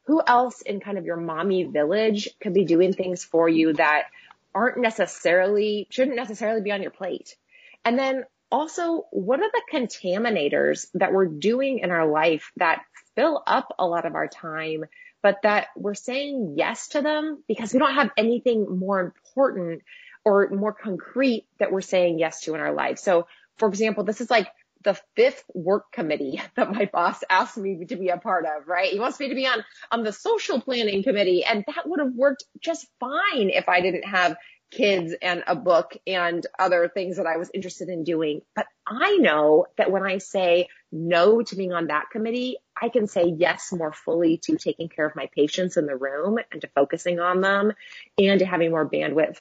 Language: English